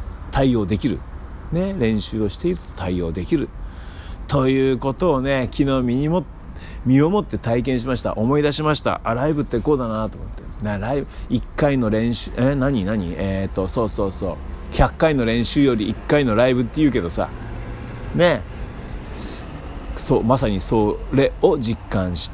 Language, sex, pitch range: Japanese, male, 85-125 Hz